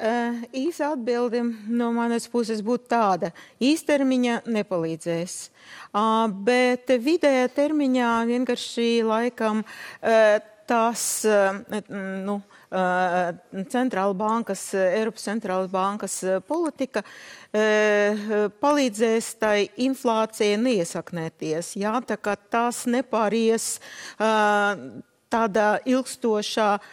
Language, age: English, 40-59